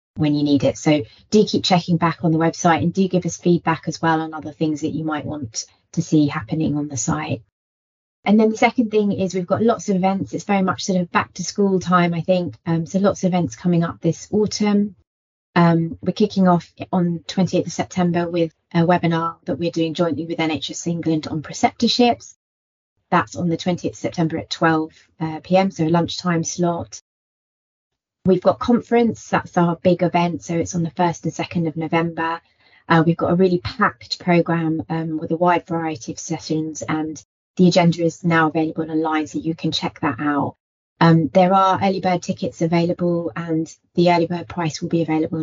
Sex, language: female, English